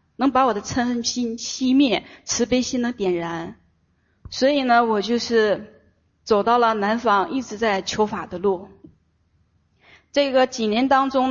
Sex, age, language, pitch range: female, 20-39, Chinese, 205-265 Hz